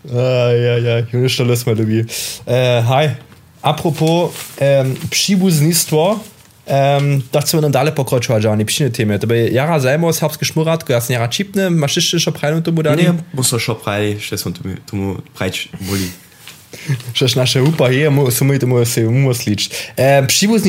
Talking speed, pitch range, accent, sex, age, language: 45 wpm, 120-155 Hz, German, male, 20-39, German